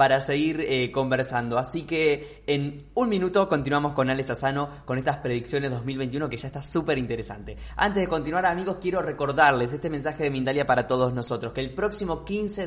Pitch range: 120-150 Hz